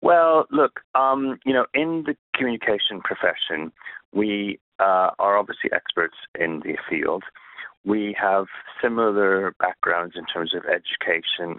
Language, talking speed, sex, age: English, 130 wpm, male, 30-49